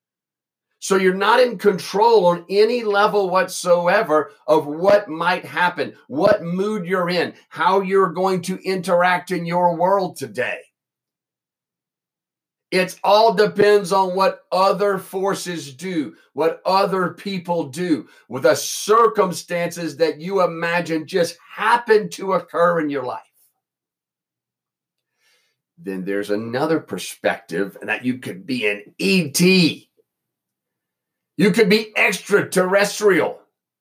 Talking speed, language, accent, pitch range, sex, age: 115 wpm, English, American, 155-195 Hz, male, 50-69